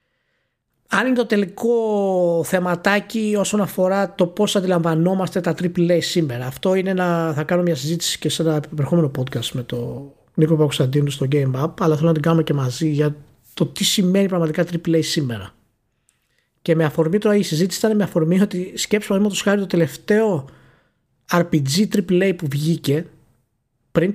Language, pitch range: Greek, 135-200 Hz